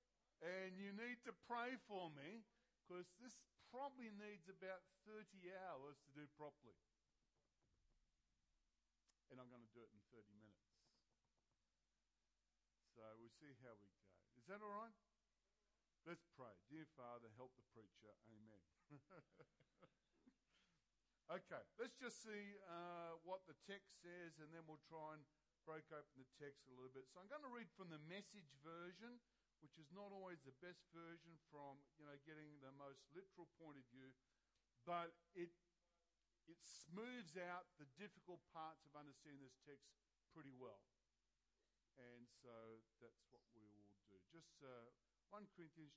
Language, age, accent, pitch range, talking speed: English, 50-69, Australian, 130-190 Hz, 150 wpm